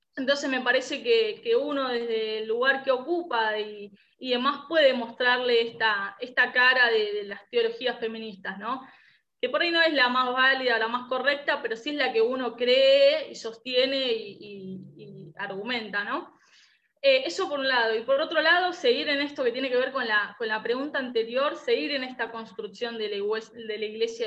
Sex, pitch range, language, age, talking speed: female, 220-275 Hz, Spanish, 10-29, 195 wpm